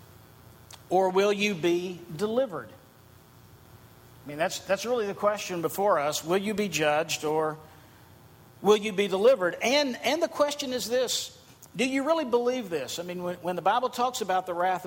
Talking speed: 180 wpm